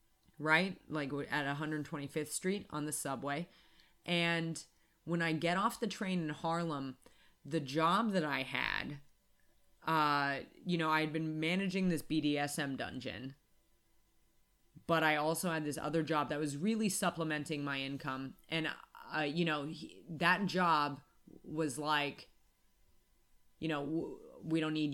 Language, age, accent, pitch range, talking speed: English, 30-49, American, 140-165 Hz, 150 wpm